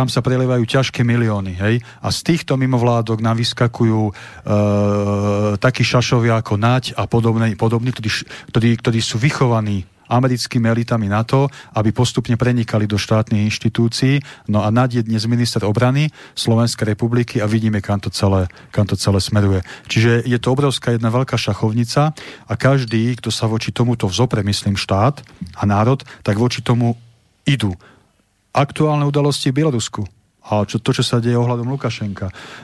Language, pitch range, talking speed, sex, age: Slovak, 105-130 Hz, 155 wpm, male, 40-59